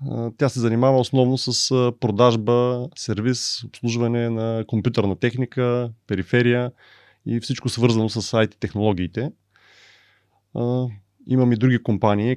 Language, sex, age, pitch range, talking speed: Bulgarian, male, 30-49, 105-125 Hz, 105 wpm